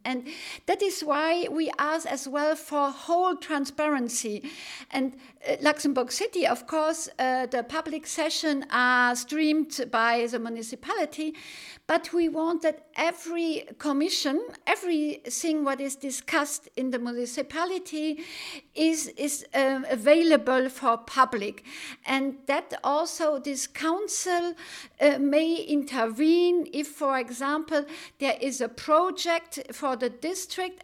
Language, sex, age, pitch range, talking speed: English, female, 50-69, 265-330 Hz, 125 wpm